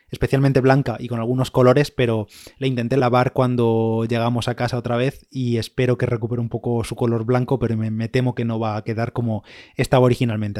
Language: Spanish